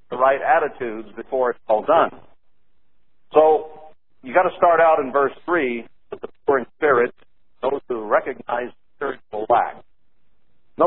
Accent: American